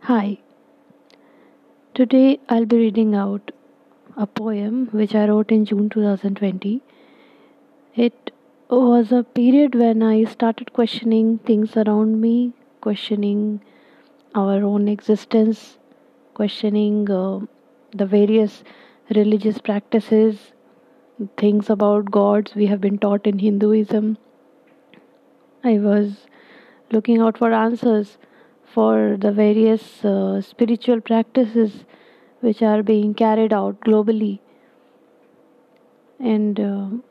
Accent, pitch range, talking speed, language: Indian, 210-245 Hz, 100 wpm, English